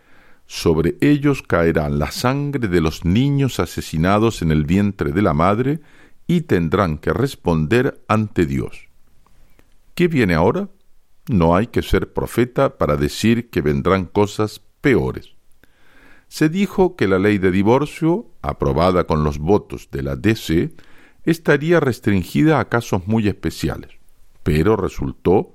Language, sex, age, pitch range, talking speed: Spanish, male, 50-69, 80-125 Hz, 135 wpm